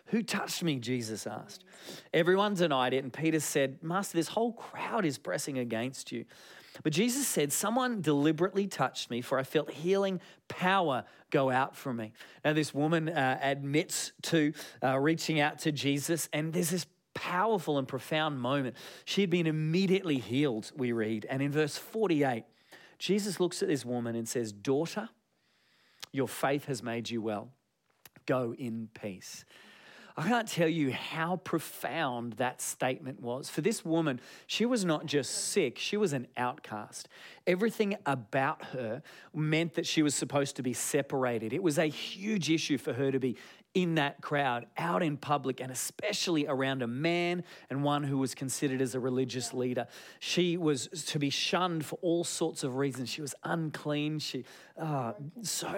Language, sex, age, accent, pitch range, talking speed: English, male, 40-59, Australian, 130-175 Hz, 170 wpm